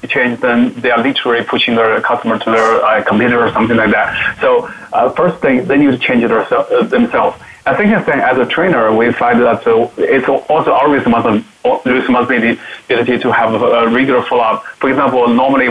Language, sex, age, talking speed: English, male, 20-39, 205 wpm